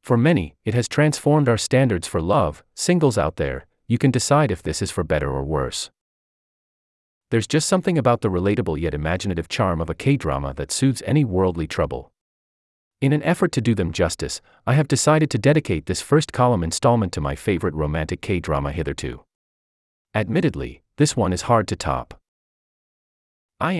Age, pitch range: 30-49, 75-125 Hz